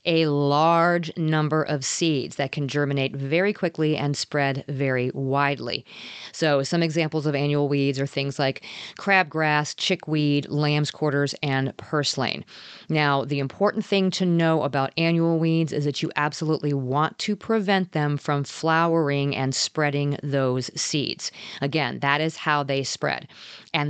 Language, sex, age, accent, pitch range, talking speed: English, female, 40-59, American, 145-180 Hz, 150 wpm